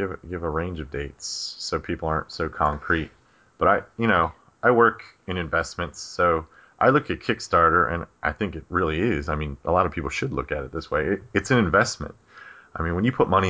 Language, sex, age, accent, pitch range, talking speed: English, male, 30-49, American, 80-95 Hz, 220 wpm